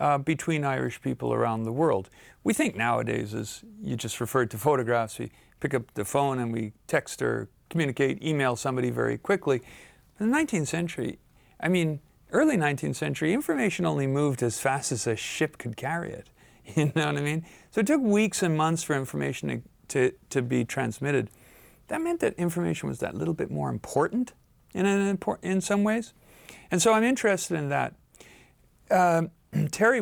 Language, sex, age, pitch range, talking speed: English, male, 50-69, 130-180 Hz, 185 wpm